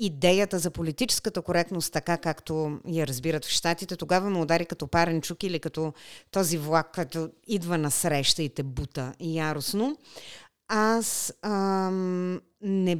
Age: 30-49